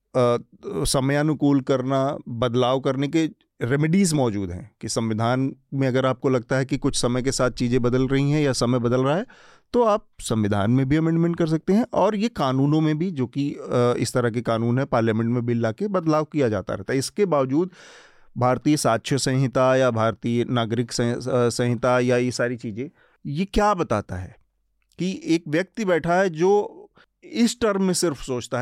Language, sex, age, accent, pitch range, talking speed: Hindi, male, 40-59, native, 125-150 Hz, 180 wpm